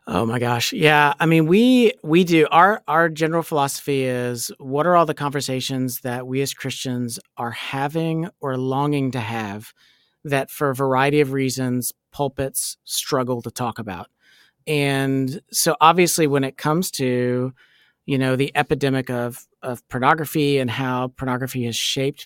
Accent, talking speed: American, 160 wpm